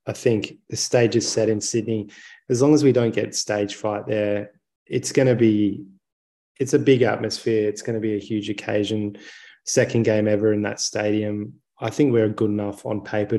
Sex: male